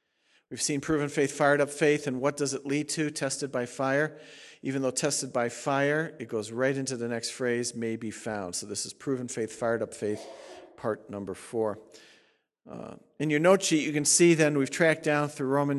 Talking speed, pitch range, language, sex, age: 215 wpm, 130-155 Hz, English, male, 50-69